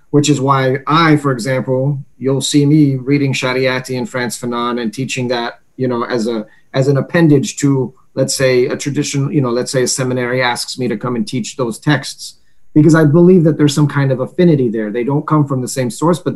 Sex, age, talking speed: male, 30-49, 225 wpm